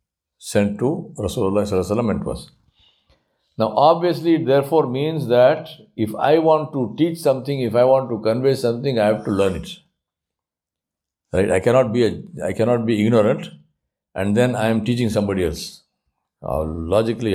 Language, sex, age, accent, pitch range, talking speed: English, male, 60-79, Indian, 115-170 Hz, 165 wpm